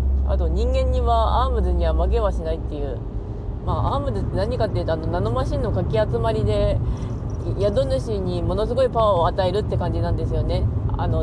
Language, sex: Japanese, female